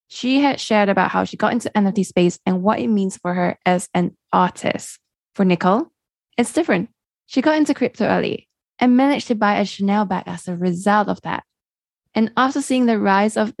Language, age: English, 10-29